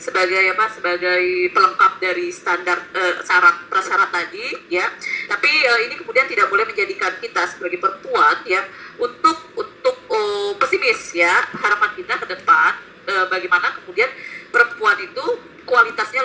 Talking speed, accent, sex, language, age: 135 wpm, native, female, Indonesian, 20-39